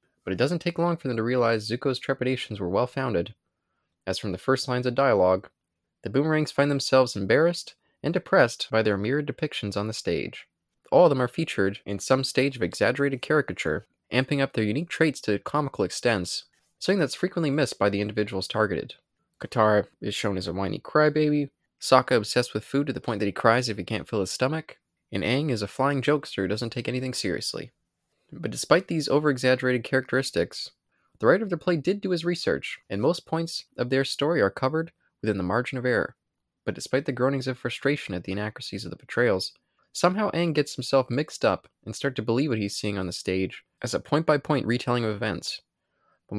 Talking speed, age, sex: 205 wpm, 20-39, male